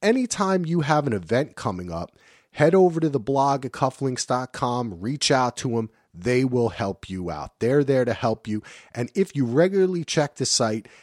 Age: 40-59